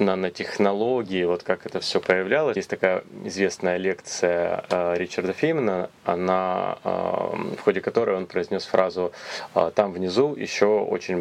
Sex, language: male, Russian